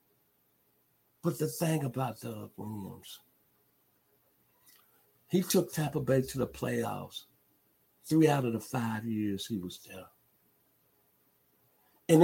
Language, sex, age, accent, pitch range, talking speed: English, male, 50-69, American, 95-115 Hz, 115 wpm